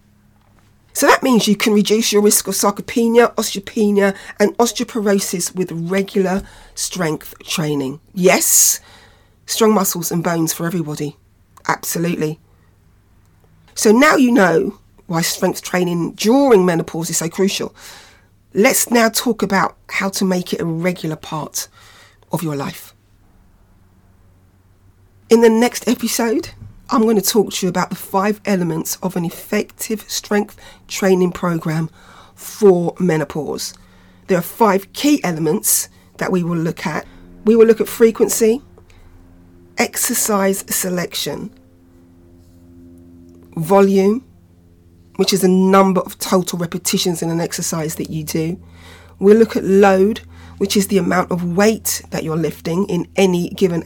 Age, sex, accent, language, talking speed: 40-59, female, British, English, 135 wpm